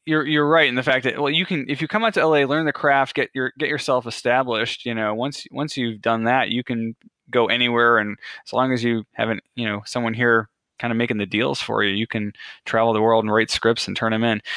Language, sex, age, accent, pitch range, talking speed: English, male, 20-39, American, 110-130 Hz, 265 wpm